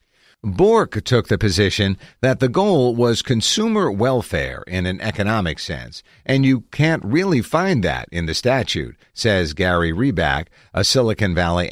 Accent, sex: American, male